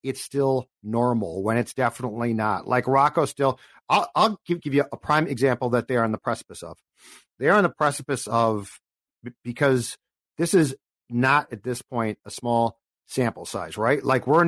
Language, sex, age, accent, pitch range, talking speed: English, male, 50-69, American, 125-160 Hz, 185 wpm